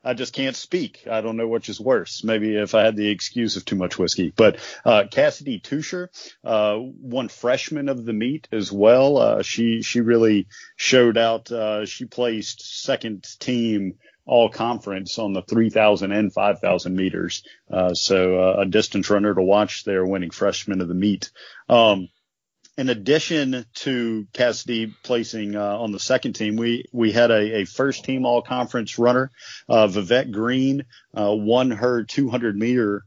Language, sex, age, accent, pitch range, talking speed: English, male, 40-59, American, 100-120 Hz, 165 wpm